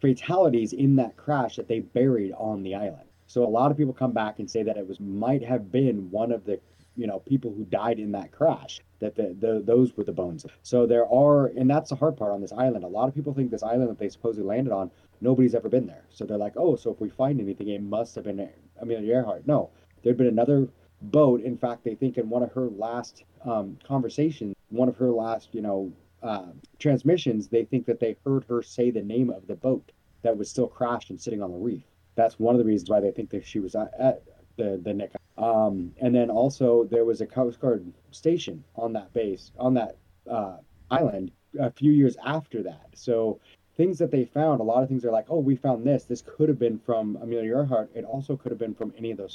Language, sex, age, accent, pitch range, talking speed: English, male, 30-49, American, 105-130 Hz, 240 wpm